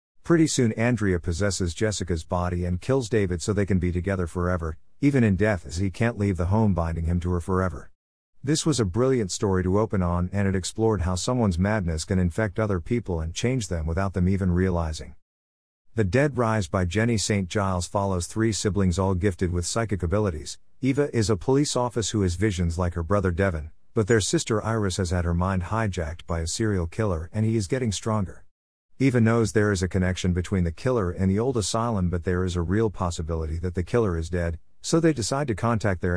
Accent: American